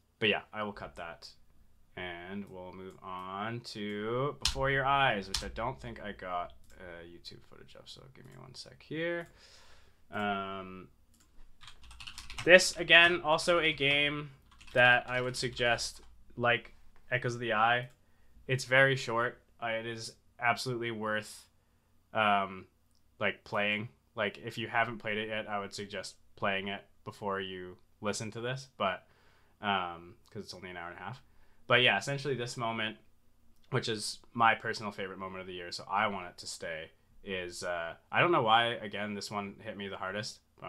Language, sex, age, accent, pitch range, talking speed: English, male, 20-39, American, 90-115 Hz, 170 wpm